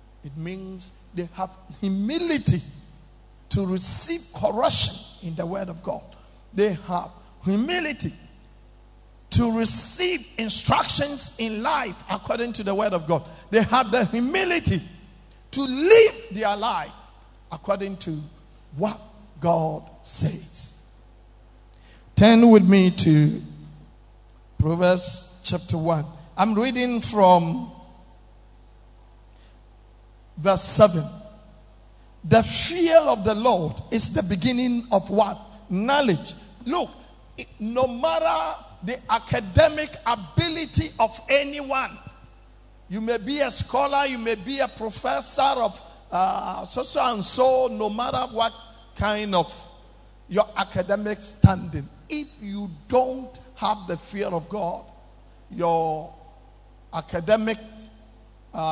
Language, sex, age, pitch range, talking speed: English, male, 50-69, 160-235 Hz, 105 wpm